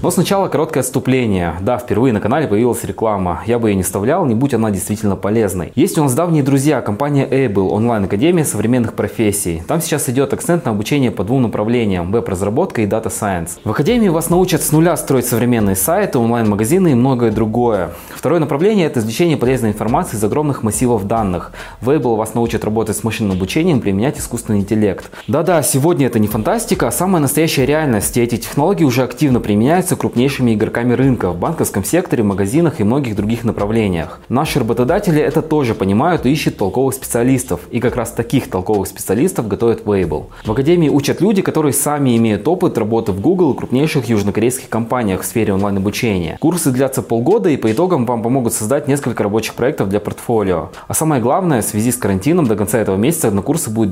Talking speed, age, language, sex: 185 wpm, 20-39, Russian, male